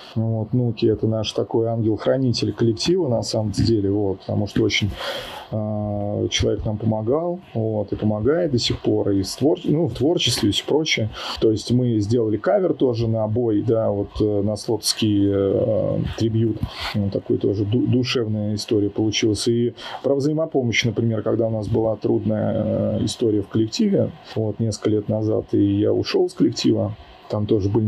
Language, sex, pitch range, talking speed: Russian, male, 105-120 Hz, 150 wpm